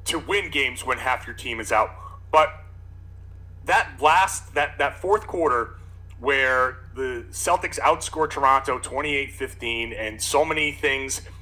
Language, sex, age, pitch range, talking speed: English, male, 30-49, 90-130 Hz, 145 wpm